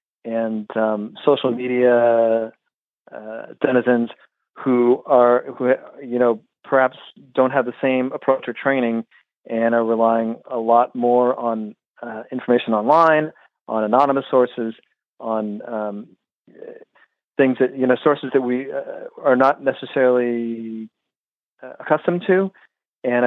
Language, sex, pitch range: English, male, 115-135 Hz